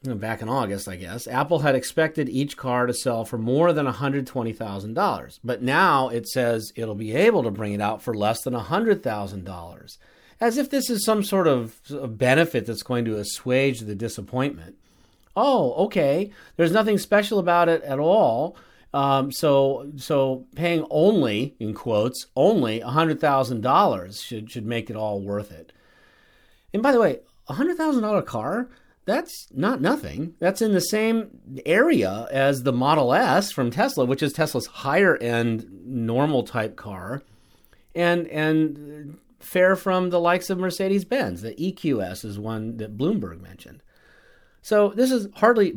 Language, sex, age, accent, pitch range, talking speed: English, male, 40-59, American, 115-170 Hz, 155 wpm